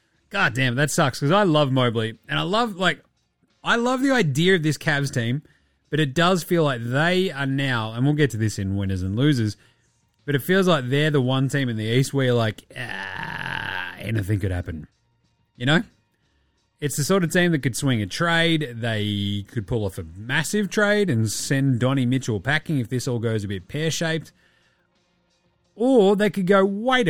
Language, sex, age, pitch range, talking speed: English, male, 30-49, 120-185 Hz, 205 wpm